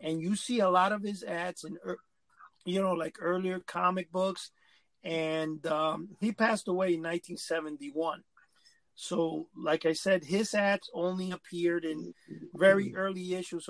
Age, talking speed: 40-59, 150 wpm